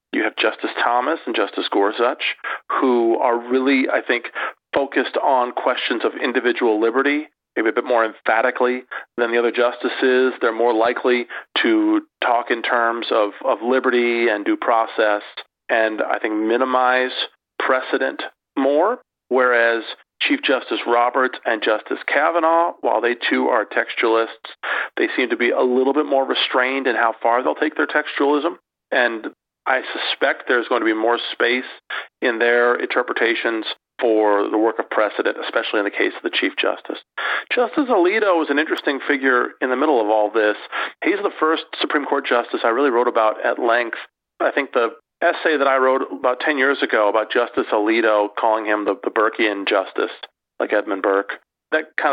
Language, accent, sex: English, American, male